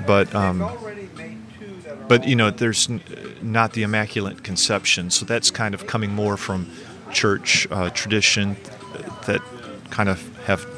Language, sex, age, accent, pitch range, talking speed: English, male, 40-59, American, 100-125 Hz, 135 wpm